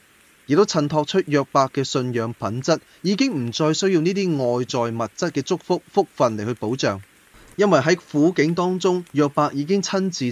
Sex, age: male, 20-39